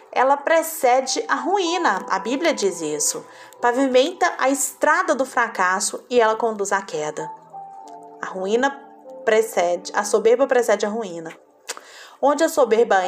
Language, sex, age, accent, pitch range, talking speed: Portuguese, female, 30-49, Brazilian, 210-315 Hz, 135 wpm